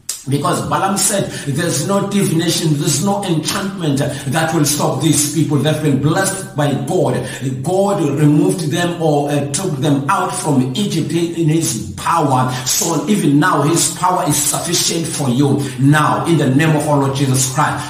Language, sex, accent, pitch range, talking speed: English, male, South African, 135-165 Hz, 170 wpm